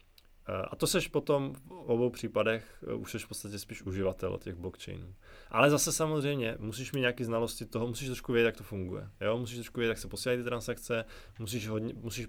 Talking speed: 200 wpm